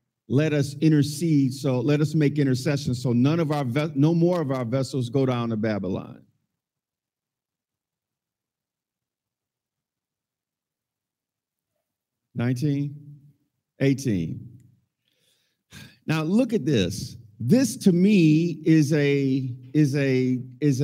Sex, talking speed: male, 100 wpm